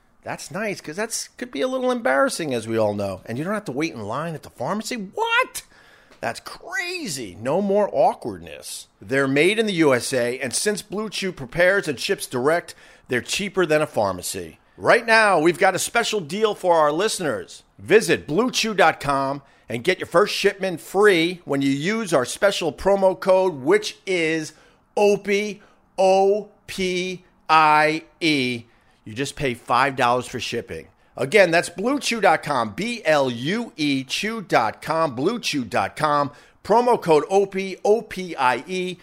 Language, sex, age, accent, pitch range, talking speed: English, male, 50-69, American, 135-205 Hz, 140 wpm